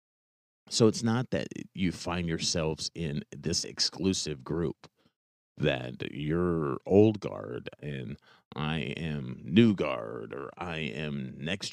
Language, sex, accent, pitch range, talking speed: English, male, American, 80-105 Hz, 125 wpm